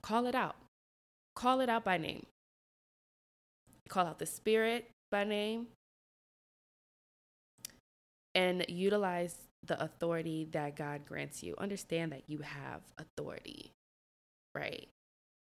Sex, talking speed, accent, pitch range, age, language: female, 110 wpm, American, 155-210 Hz, 20-39, English